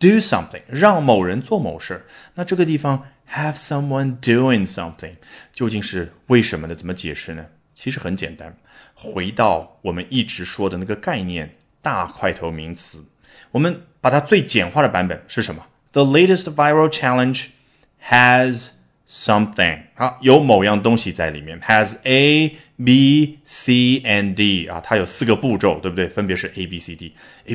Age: 20-39